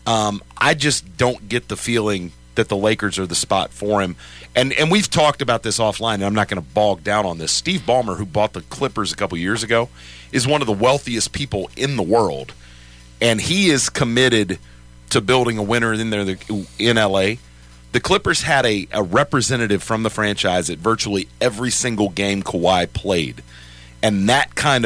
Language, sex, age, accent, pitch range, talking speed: English, male, 40-59, American, 85-125 Hz, 195 wpm